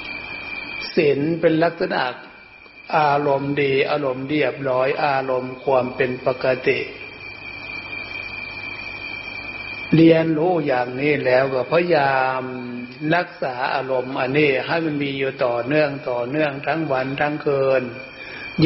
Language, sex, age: Thai, male, 60-79